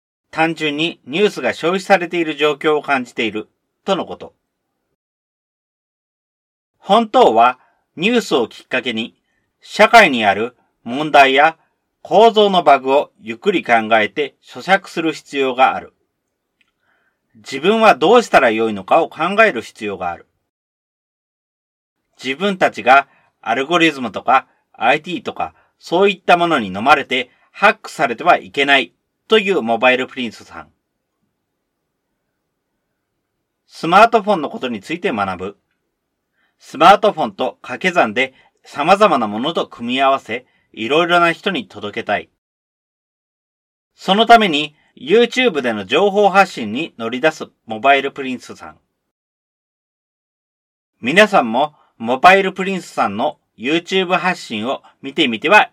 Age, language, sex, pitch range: 40-59, Japanese, male, 125-190 Hz